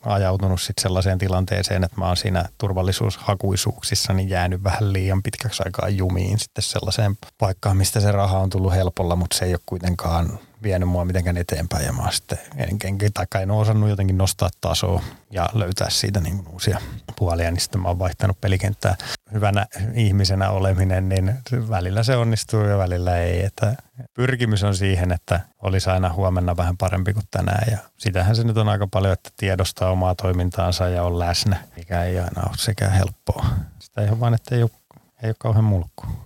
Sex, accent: male, native